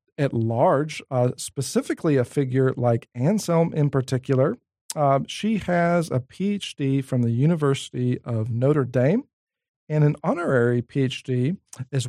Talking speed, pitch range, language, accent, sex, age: 130 wpm, 125-155 Hz, English, American, male, 40-59